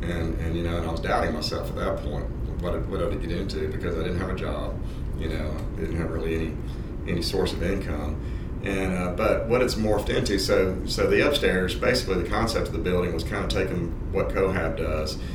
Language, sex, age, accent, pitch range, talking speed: English, male, 40-59, American, 80-95 Hz, 230 wpm